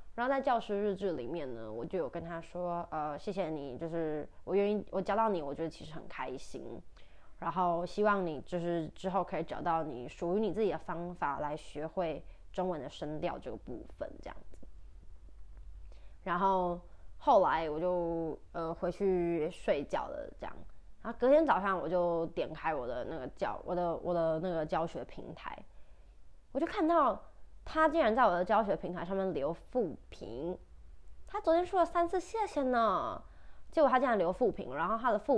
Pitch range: 160-200 Hz